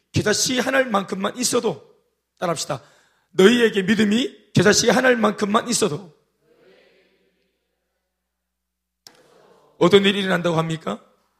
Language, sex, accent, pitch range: Korean, male, native, 180-245 Hz